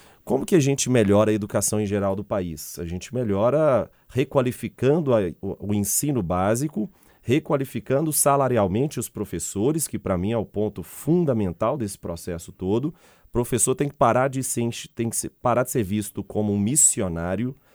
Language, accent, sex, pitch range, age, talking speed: Portuguese, Brazilian, male, 100-140 Hz, 30-49, 155 wpm